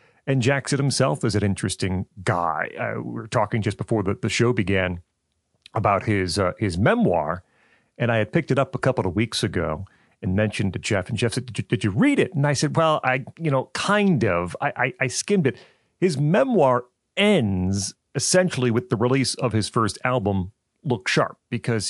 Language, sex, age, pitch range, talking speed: English, male, 40-59, 100-135 Hz, 205 wpm